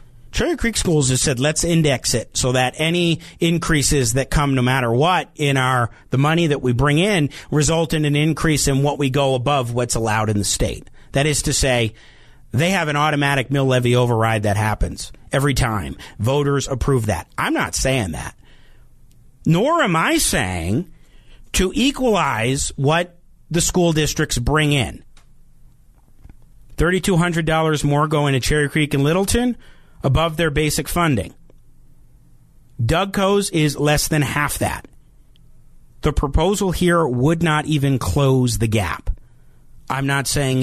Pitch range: 125-160 Hz